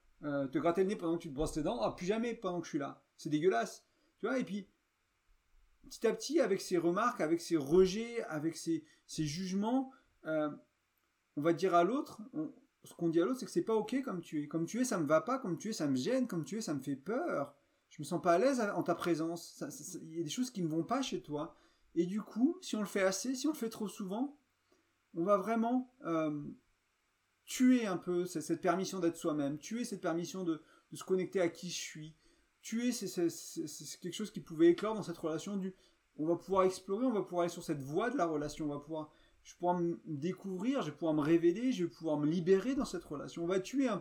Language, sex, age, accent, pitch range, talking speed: French, male, 30-49, French, 160-215 Hz, 260 wpm